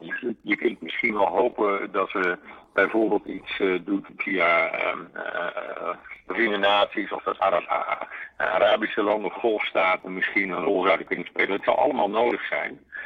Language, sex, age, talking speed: Dutch, male, 50-69, 165 wpm